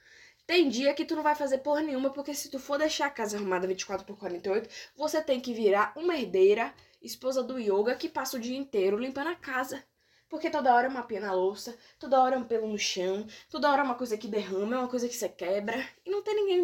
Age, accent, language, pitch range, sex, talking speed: 10-29, Brazilian, Portuguese, 215-340 Hz, female, 250 wpm